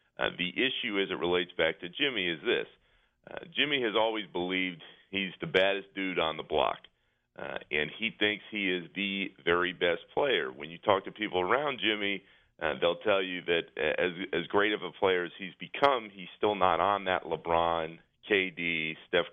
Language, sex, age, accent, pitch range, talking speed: English, male, 40-59, American, 85-100 Hz, 195 wpm